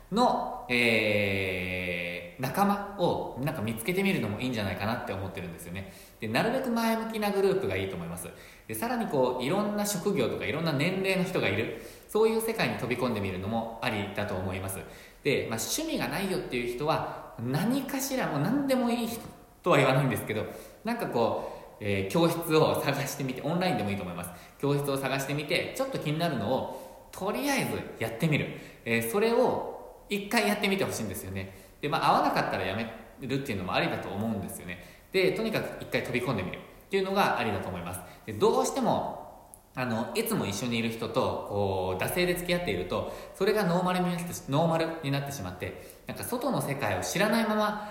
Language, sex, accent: Japanese, male, native